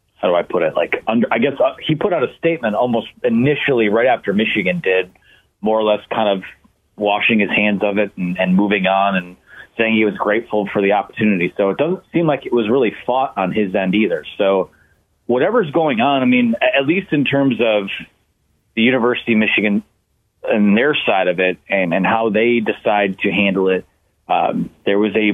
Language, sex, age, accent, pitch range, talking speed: English, male, 30-49, American, 105-145 Hz, 205 wpm